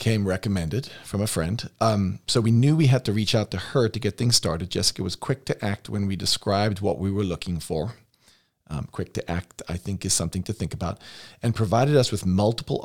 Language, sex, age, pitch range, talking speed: English, male, 40-59, 95-115 Hz, 230 wpm